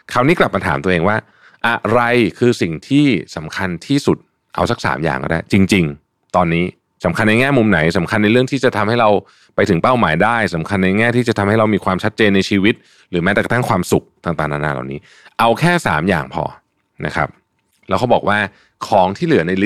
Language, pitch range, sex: Thai, 90-115 Hz, male